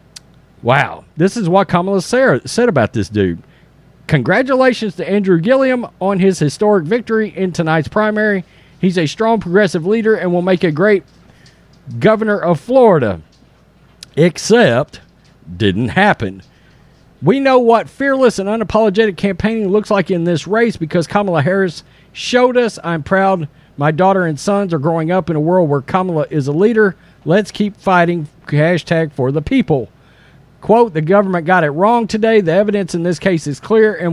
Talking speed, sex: 160 wpm, male